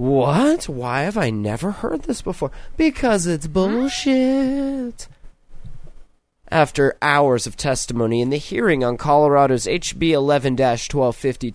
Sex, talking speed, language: male, 115 wpm, English